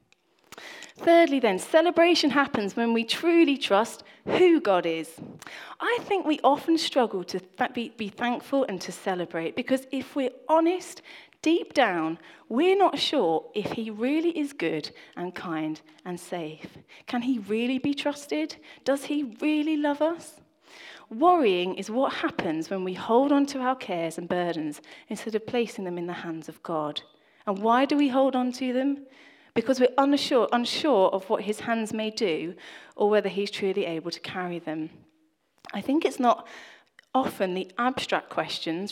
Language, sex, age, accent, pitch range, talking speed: English, female, 30-49, British, 180-275 Hz, 165 wpm